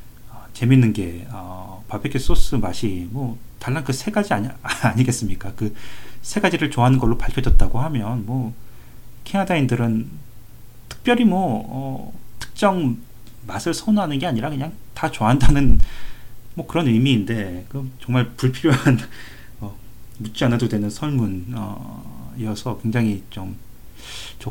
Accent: native